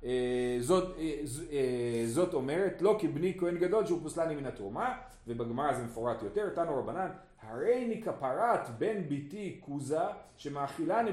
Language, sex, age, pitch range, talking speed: Hebrew, male, 30-49, 135-190 Hz, 135 wpm